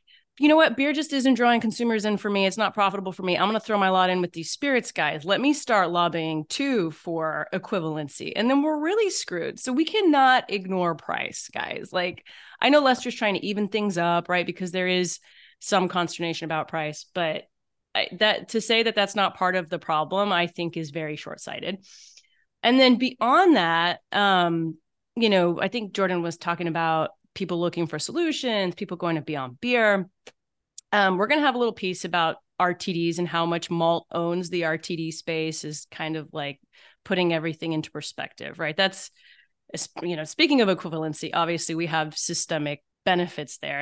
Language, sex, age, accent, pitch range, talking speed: English, female, 30-49, American, 165-215 Hz, 190 wpm